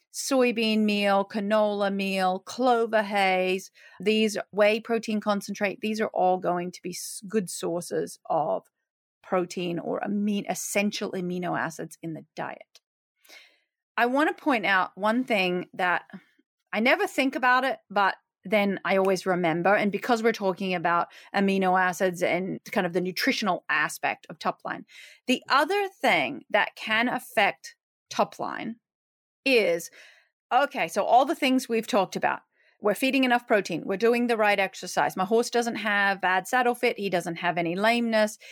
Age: 30-49